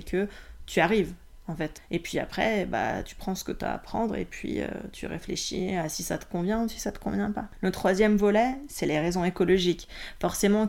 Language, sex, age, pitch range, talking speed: French, female, 20-39, 170-200 Hz, 230 wpm